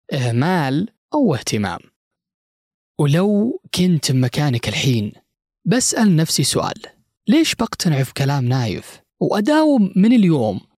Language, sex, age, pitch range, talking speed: Arabic, male, 20-39, 125-190 Hz, 100 wpm